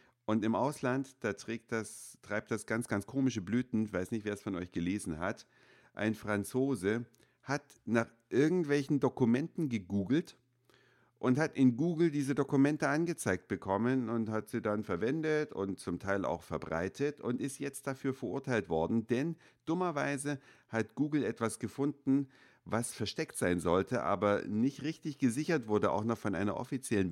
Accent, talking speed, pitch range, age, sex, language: German, 160 wpm, 105-135 Hz, 50-69, male, German